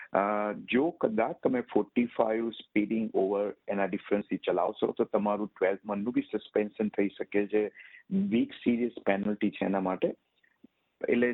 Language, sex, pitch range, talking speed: Gujarati, male, 100-135 Hz, 130 wpm